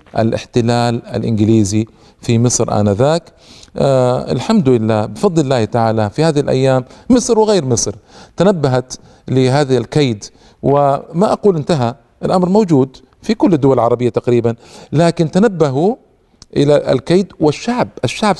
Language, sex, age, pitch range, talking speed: Arabic, male, 50-69, 115-155 Hz, 115 wpm